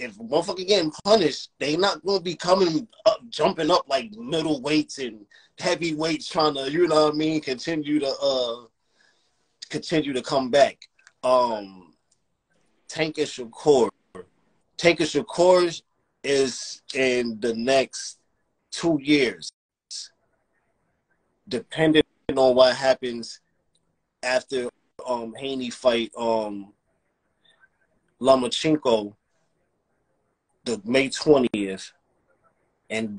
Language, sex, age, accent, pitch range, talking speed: English, male, 20-39, American, 115-155 Hz, 100 wpm